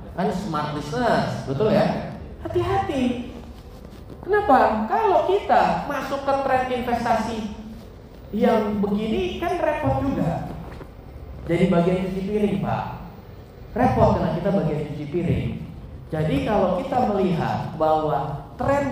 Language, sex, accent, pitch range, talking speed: Indonesian, male, native, 185-270 Hz, 110 wpm